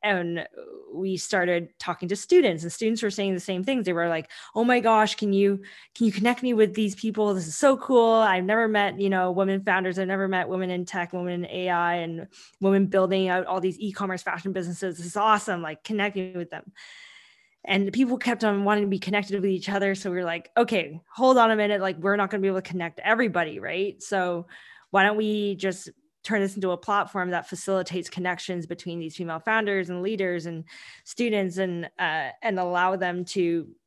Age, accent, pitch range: 20-39, American, 180-205 Hz